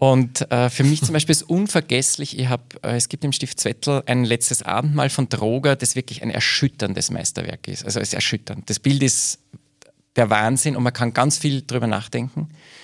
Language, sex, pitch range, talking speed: German, male, 120-145 Hz, 200 wpm